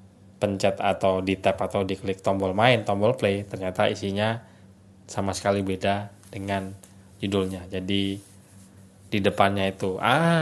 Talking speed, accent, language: 125 wpm, native, Indonesian